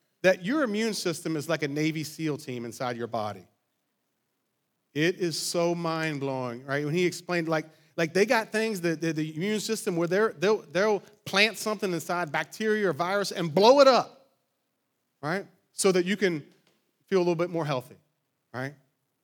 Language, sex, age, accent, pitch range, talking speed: English, male, 30-49, American, 155-210 Hz, 175 wpm